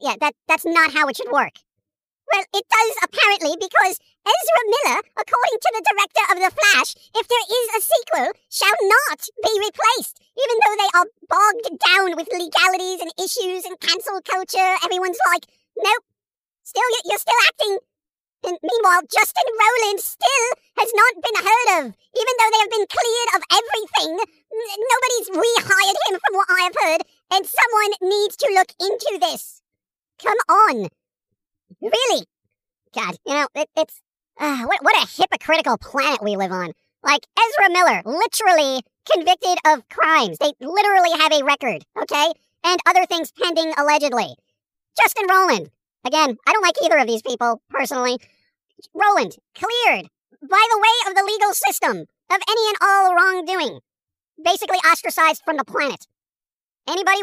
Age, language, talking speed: 40-59, English, 155 wpm